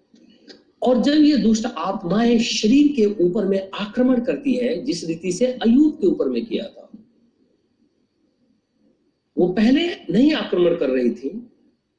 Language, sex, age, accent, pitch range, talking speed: Hindi, male, 50-69, native, 215-265 Hz, 140 wpm